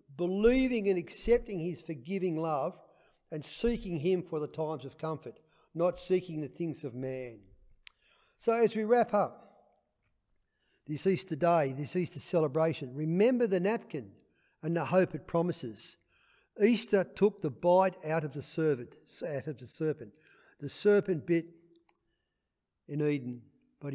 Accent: Australian